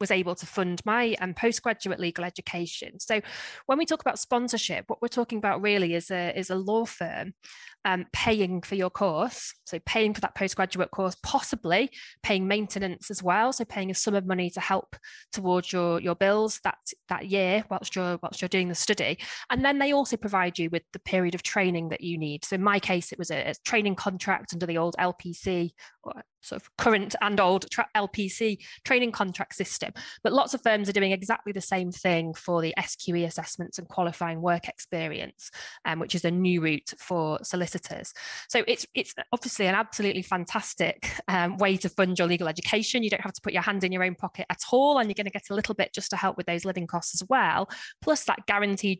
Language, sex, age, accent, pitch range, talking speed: English, female, 20-39, British, 180-215 Hz, 215 wpm